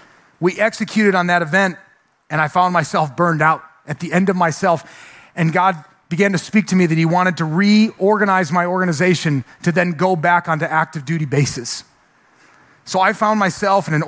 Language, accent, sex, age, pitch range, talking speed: English, American, male, 30-49, 160-195 Hz, 190 wpm